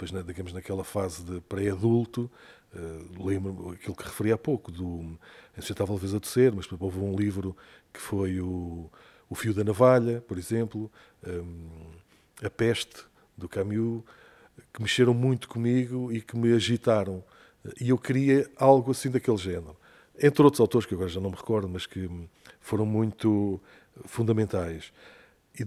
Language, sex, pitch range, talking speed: Portuguese, male, 95-120 Hz, 160 wpm